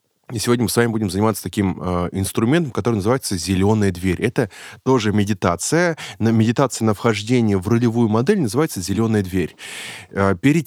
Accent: native